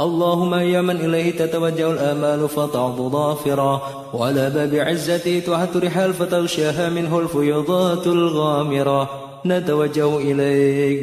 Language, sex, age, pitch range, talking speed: Indonesian, male, 30-49, 140-175 Hz, 105 wpm